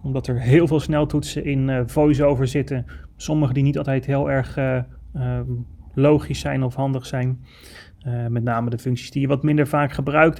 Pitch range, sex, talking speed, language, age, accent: 125-145 Hz, male, 190 wpm, Dutch, 30-49, Dutch